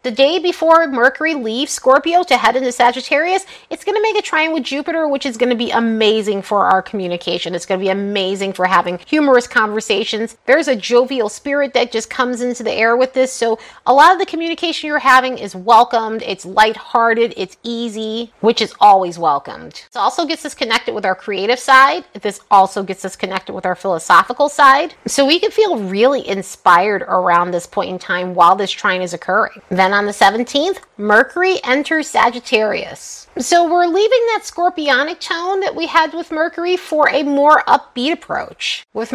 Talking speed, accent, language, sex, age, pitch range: 190 wpm, American, English, female, 30-49, 205-305 Hz